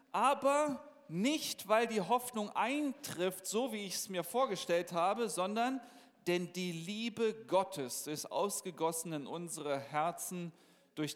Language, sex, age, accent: German, male, 40-59, German